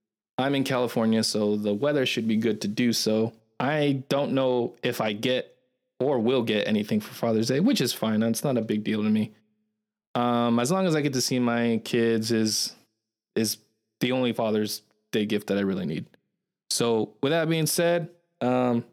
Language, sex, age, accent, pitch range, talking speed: English, male, 20-39, American, 115-150 Hz, 195 wpm